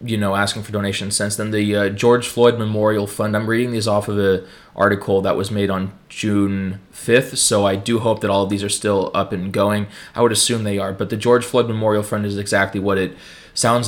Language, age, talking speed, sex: English, 20-39, 240 wpm, male